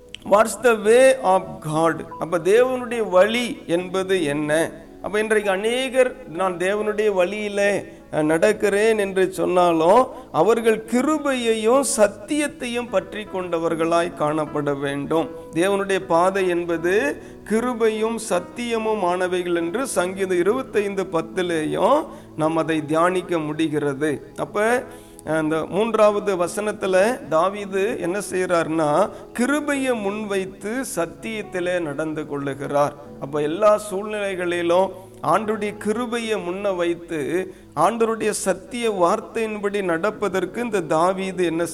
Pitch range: 165-215 Hz